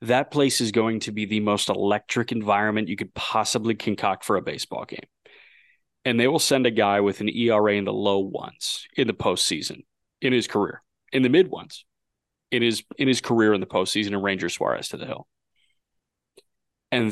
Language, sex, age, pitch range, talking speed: English, male, 30-49, 105-125 Hz, 195 wpm